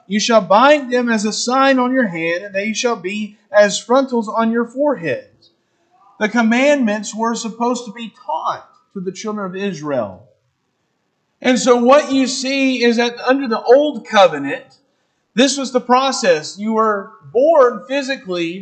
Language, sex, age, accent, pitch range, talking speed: English, male, 40-59, American, 200-260 Hz, 160 wpm